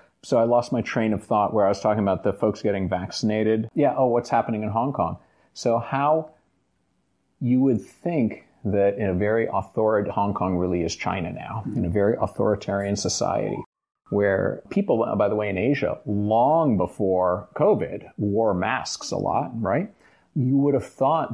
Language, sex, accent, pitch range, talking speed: English, male, American, 105-135 Hz, 175 wpm